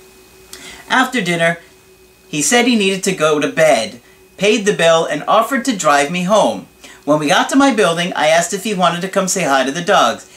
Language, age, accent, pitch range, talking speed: English, 40-59, American, 155-220 Hz, 215 wpm